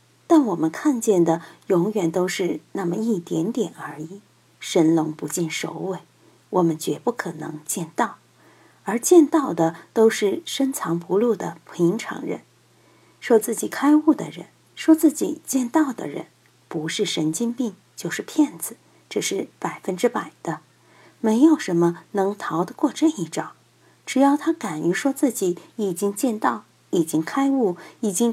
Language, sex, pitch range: Chinese, female, 175-275 Hz